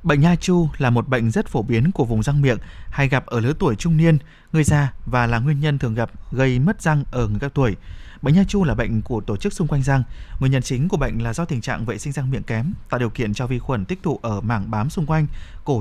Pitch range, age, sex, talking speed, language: 120-160 Hz, 20-39, male, 280 wpm, Vietnamese